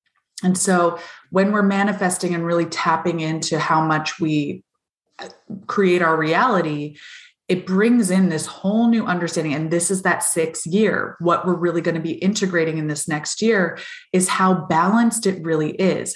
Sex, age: female, 20-39